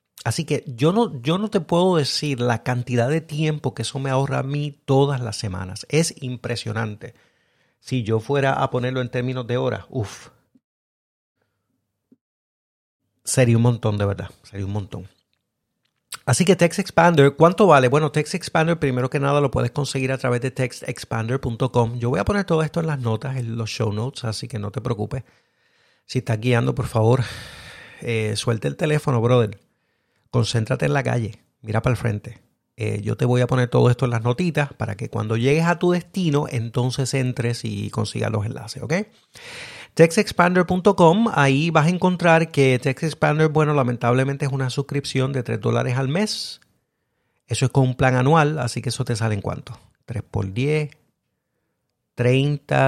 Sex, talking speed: male, 175 wpm